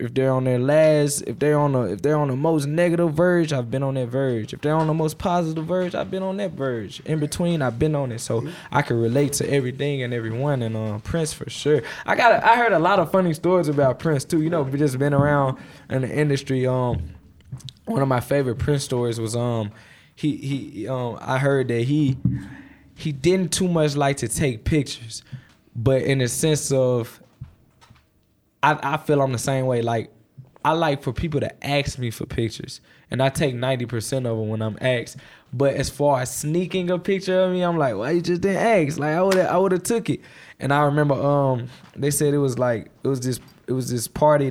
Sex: male